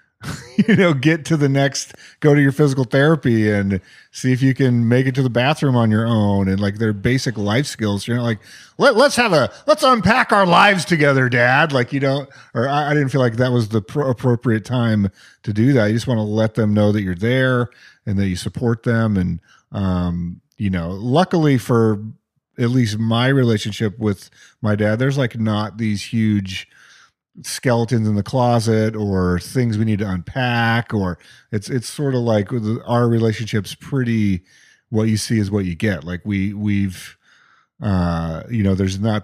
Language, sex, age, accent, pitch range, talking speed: English, male, 40-59, American, 100-130 Hz, 195 wpm